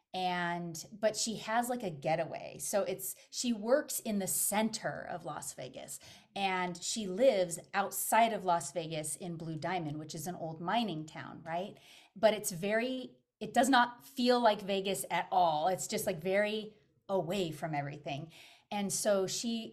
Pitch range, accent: 175-235 Hz, American